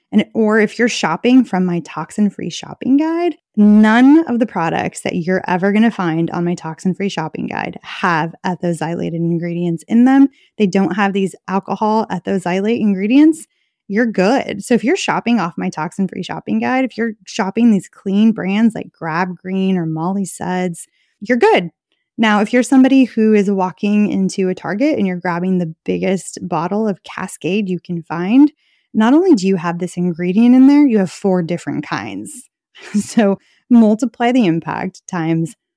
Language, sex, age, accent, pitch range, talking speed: English, female, 20-39, American, 175-230 Hz, 170 wpm